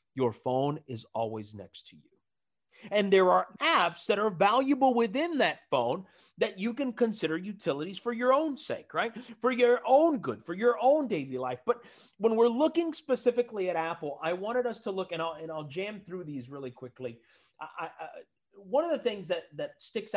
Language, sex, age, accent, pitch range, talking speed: English, male, 30-49, American, 145-230 Hz, 200 wpm